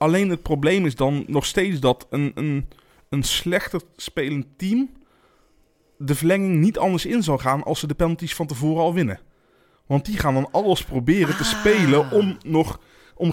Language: Dutch